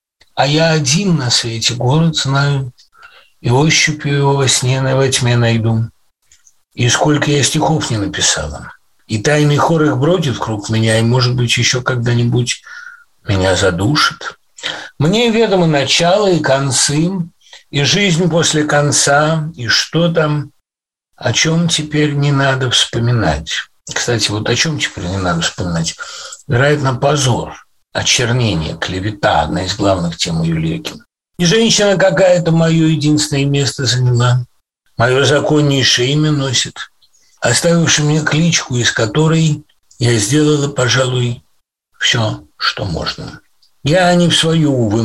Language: English